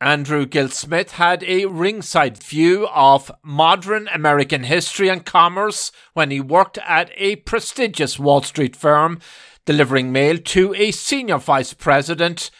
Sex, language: male, English